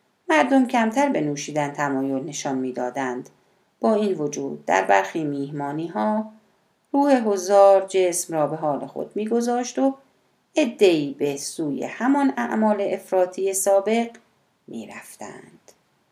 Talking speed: 115 wpm